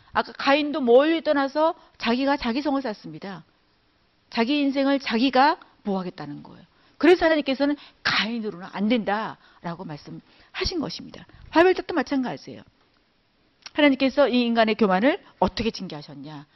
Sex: female